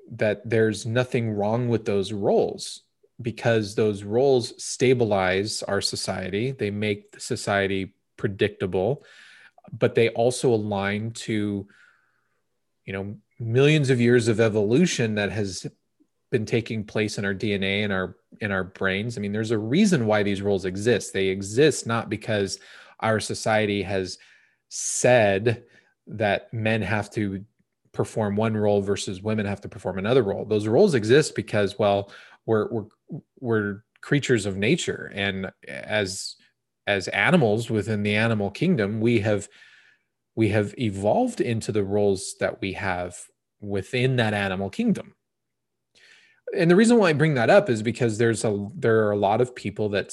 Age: 30-49